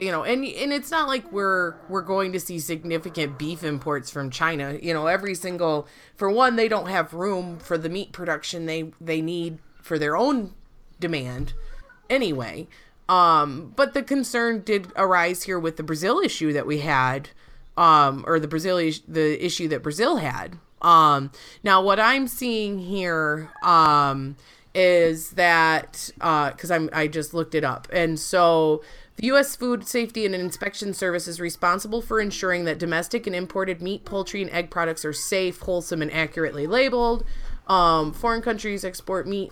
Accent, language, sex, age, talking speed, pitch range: American, English, female, 30-49, 170 wpm, 160-200 Hz